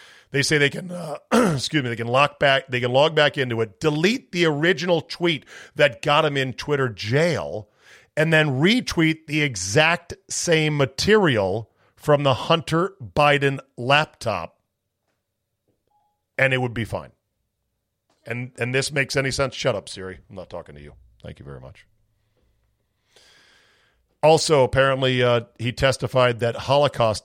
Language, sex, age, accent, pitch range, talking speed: English, male, 40-59, American, 110-145 Hz, 150 wpm